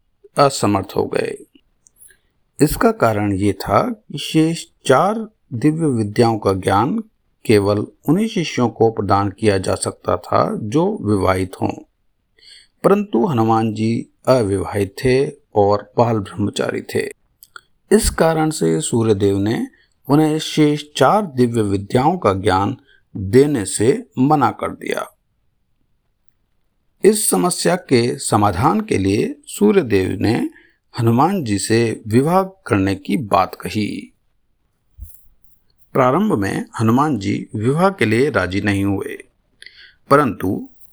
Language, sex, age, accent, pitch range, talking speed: Hindi, male, 50-69, native, 100-155 Hz, 115 wpm